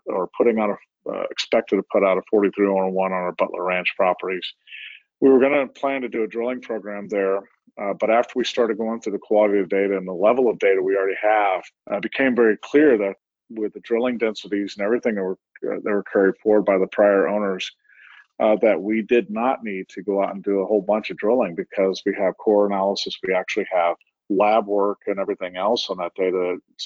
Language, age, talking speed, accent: English, 40-59, 230 wpm, American